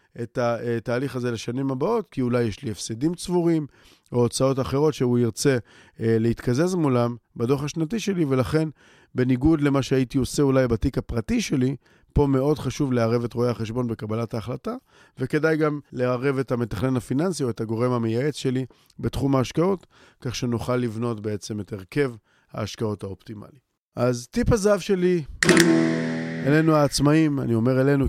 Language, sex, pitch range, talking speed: Hebrew, male, 115-145 Hz, 145 wpm